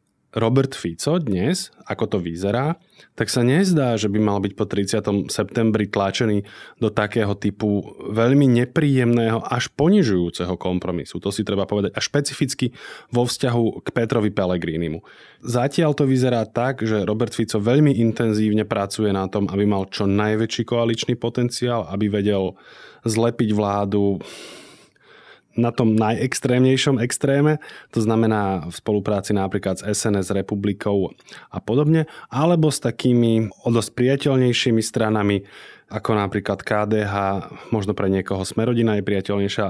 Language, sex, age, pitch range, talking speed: Slovak, male, 20-39, 100-125 Hz, 130 wpm